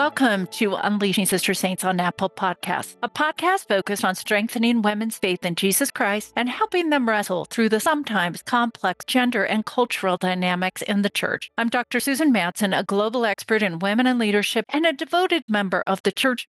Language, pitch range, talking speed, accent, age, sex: English, 185-250 Hz, 185 wpm, American, 40-59, female